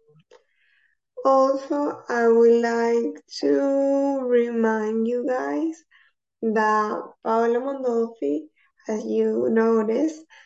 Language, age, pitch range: English, 20-39, 210-260 Hz